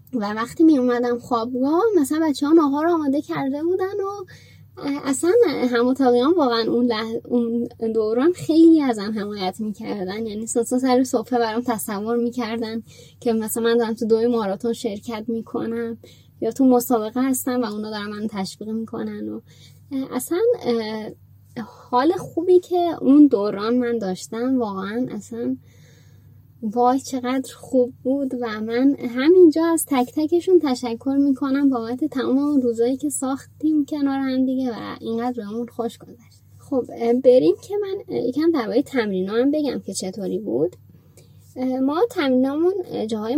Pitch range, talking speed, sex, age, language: 225-285 Hz, 140 wpm, female, 10-29, Persian